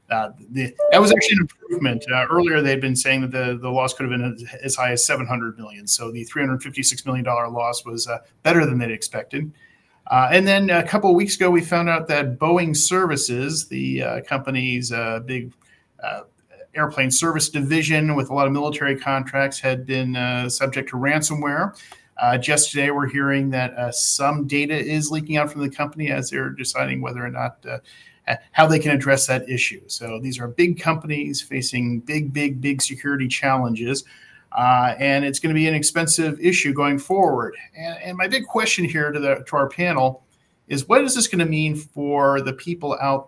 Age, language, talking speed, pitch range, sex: 40-59, English, 190 wpm, 125-155 Hz, male